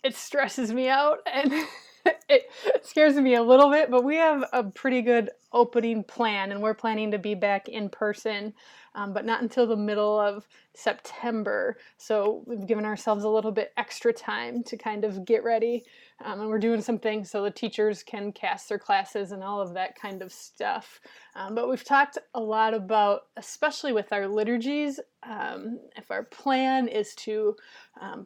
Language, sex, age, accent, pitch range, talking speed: English, female, 20-39, American, 215-245 Hz, 185 wpm